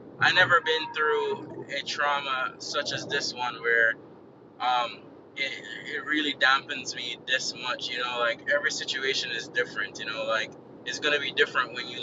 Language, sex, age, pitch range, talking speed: English, male, 20-39, 125-150 Hz, 180 wpm